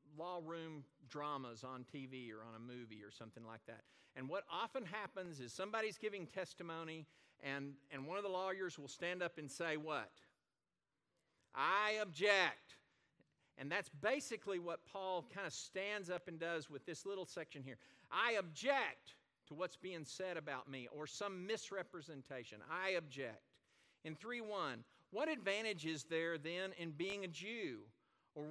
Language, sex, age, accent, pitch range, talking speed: English, male, 50-69, American, 155-235 Hz, 160 wpm